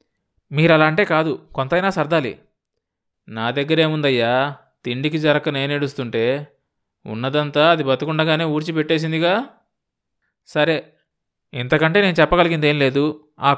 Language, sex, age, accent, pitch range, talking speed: Telugu, male, 20-39, native, 135-180 Hz, 95 wpm